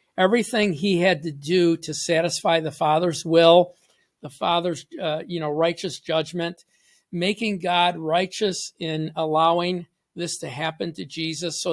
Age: 50-69